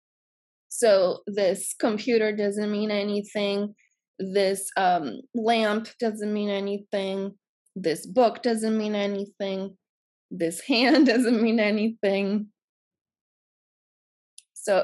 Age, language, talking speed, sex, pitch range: 20-39, English, 95 wpm, female, 190-230 Hz